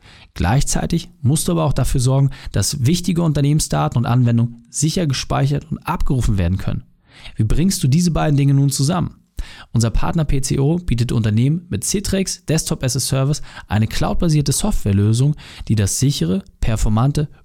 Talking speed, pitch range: 150 wpm, 115-155 Hz